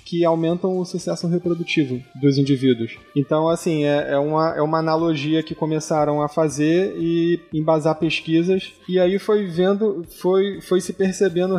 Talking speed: 145 wpm